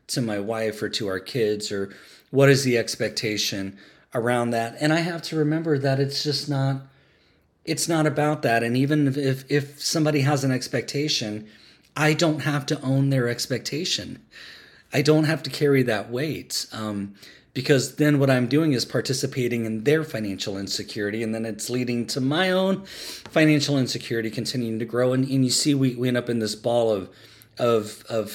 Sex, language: male, English